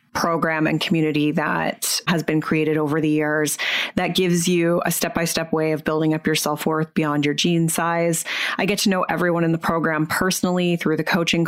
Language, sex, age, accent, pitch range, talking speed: English, female, 30-49, American, 160-185 Hz, 210 wpm